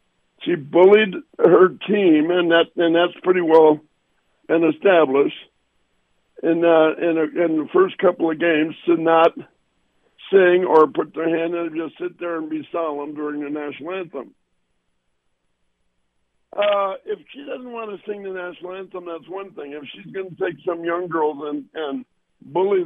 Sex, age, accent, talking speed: male, 60-79, American, 165 wpm